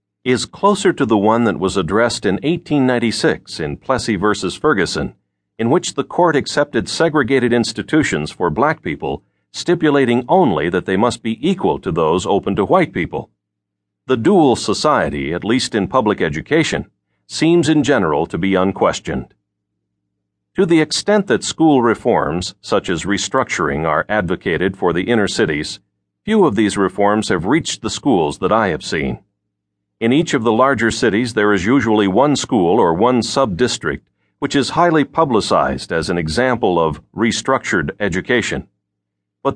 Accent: American